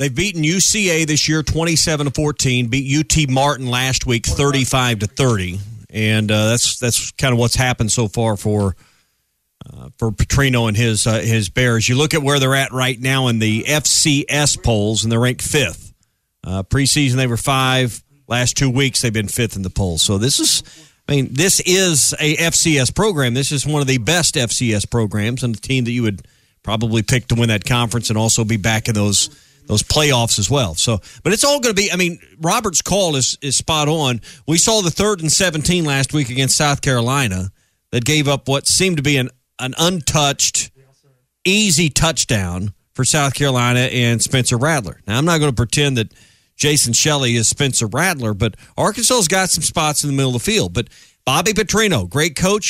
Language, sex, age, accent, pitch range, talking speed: English, male, 40-59, American, 115-155 Hz, 205 wpm